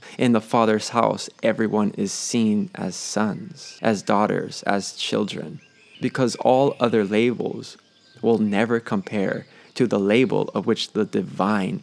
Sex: male